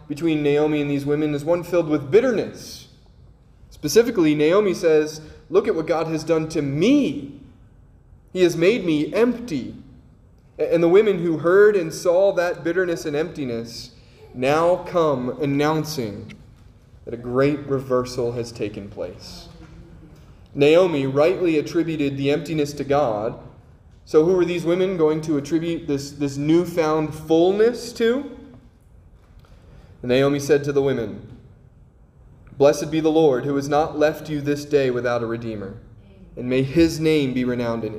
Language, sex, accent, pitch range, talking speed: English, male, American, 125-165 Hz, 145 wpm